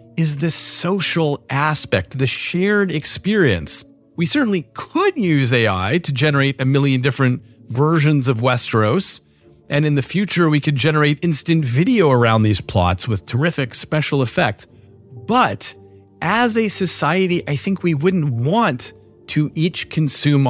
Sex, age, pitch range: male, 40-59, 135-185 Hz